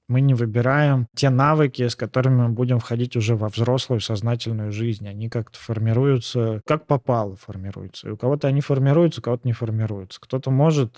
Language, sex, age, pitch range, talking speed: Russian, male, 20-39, 110-135 Hz, 175 wpm